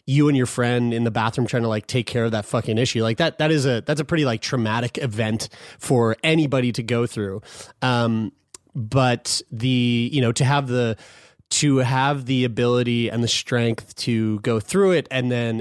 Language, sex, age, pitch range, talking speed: English, male, 30-49, 115-140 Hz, 205 wpm